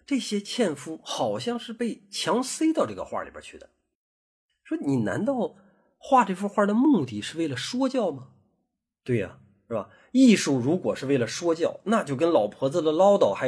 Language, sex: Chinese, male